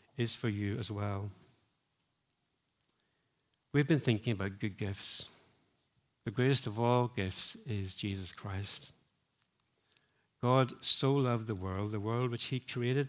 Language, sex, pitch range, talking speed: English, male, 110-135 Hz, 135 wpm